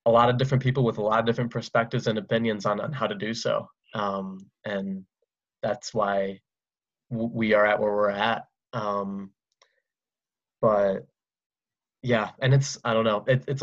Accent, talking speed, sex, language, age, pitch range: American, 165 wpm, male, English, 20-39, 105-115 Hz